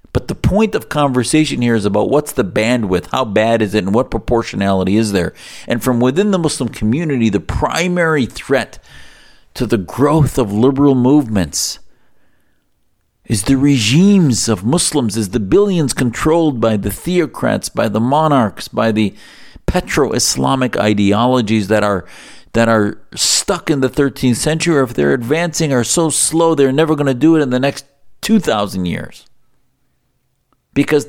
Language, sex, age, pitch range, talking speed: English, male, 50-69, 110-145 Hz, 155 wpm